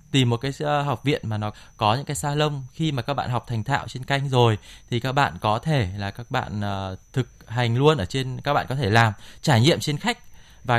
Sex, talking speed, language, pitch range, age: male, 245 wpm, Vietnamese, 115-150 Hz, 20-39